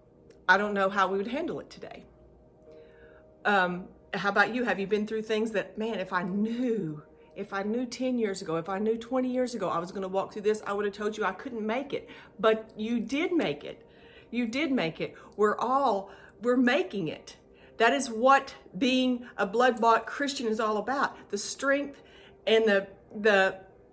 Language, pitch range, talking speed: English, 195-255 Hz, 200 wpm